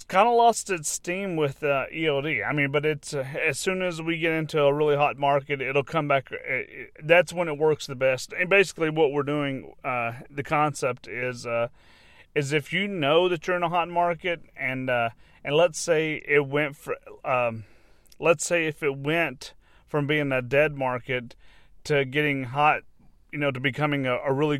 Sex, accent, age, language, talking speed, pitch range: male, American, 30-49, English, 200 wpm, 135-155 Hz